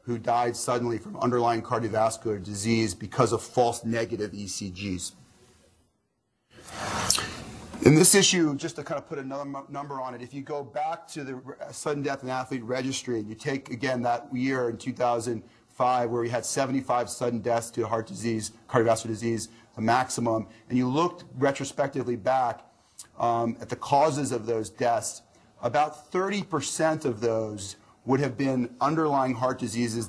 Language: English